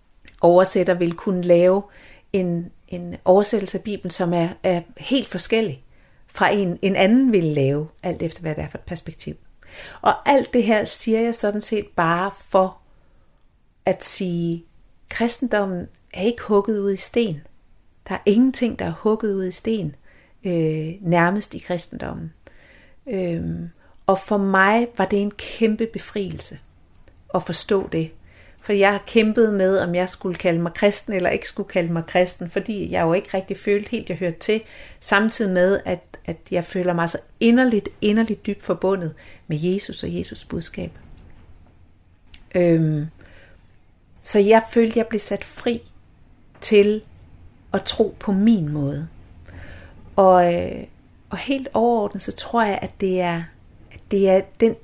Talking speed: 160 wpm